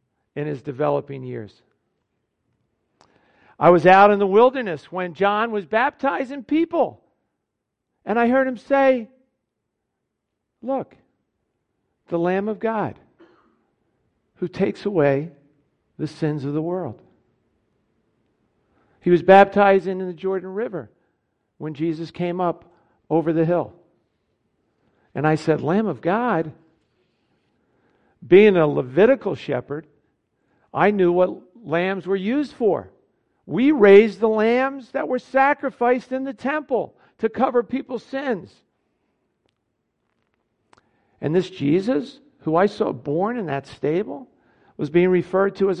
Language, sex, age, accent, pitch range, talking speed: English, male, 50-69, American, 150-225 Hz, 120 wpm